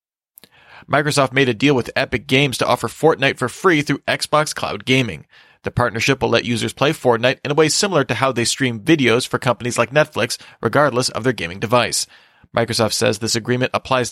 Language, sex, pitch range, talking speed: English, male, 115-140 Hz, 195 wpm